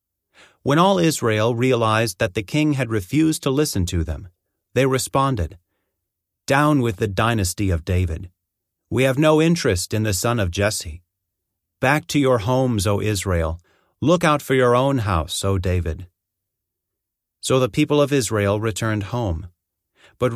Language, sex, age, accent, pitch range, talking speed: English, male, 40-59, American, 95-130 Hz, 155 wpm